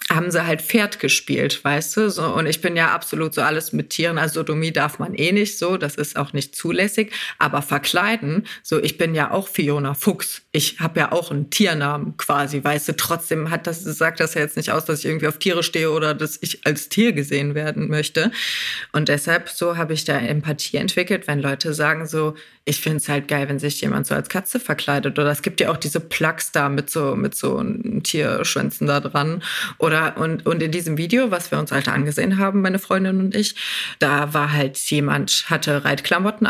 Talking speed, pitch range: 215 wpm, 150-200 Hz